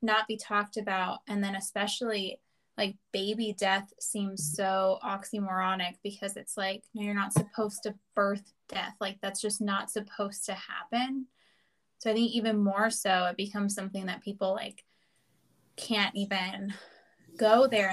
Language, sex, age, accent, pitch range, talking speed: English, female, 20-39, American, 195-215 Hz, 150 wpm